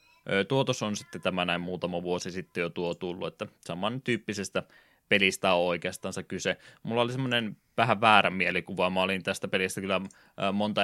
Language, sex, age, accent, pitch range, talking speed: Finnish, male, 20-39, native, 90-100 Hz, 155 wpm